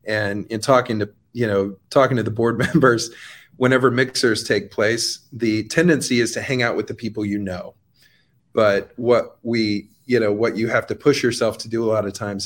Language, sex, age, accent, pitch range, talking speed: English, male, 30-49, American, 105-125 Hz, 205 wpm